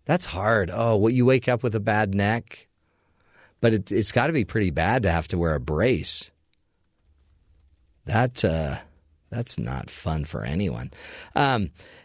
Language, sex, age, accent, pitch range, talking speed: English, male, 40-59, American, 95-125 Hz, 165 wpm